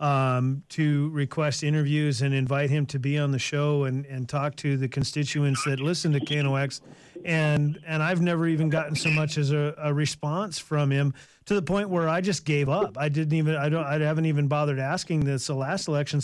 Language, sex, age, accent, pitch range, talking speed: English, male, 40-59, American, 145-165 Hz, 215 wpm